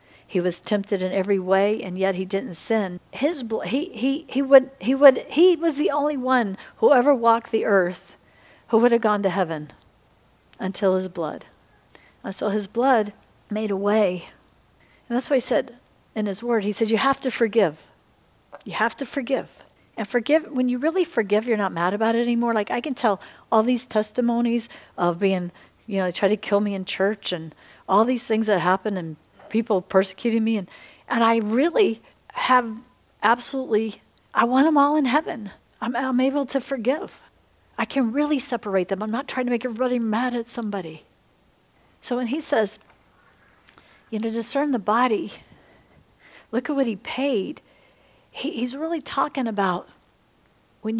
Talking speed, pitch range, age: 180 wpm, 195-255 Hz, 50-69